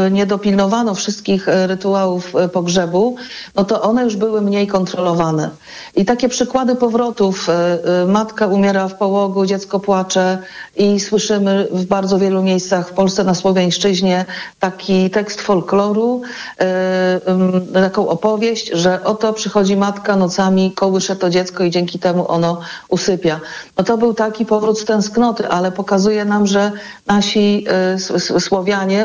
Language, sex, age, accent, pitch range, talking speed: Polish, female, 50-69, native, 185-215 Hz, 130 wpm